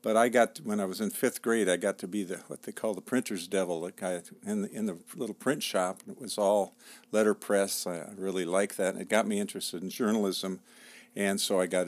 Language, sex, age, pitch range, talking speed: English, male, 50-69, 95-125 Hz, 240 wpm